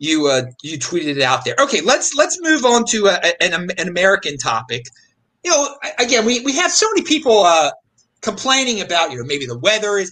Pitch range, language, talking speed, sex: 180-265 Hz, English, 215 wpm, male